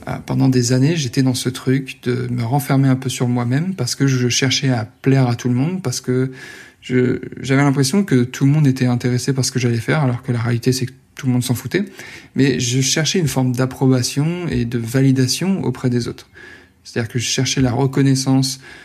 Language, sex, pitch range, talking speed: French, male, 125-135 Hz, 220 wpm